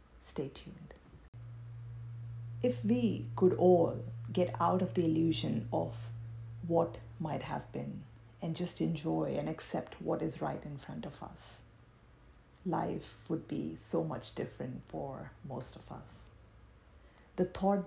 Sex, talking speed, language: female, 135 wpm, English